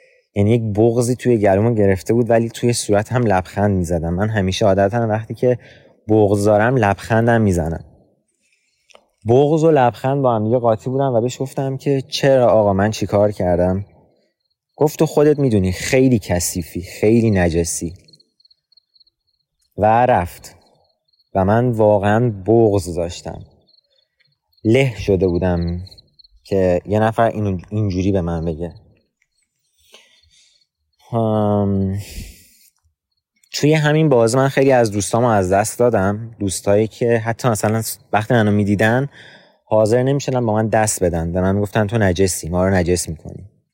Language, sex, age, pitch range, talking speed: Persian, male, 30-49, 90-120 Hz, 135 wpm